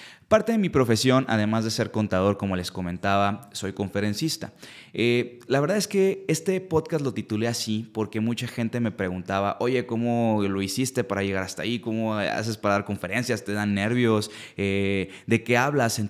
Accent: Mexican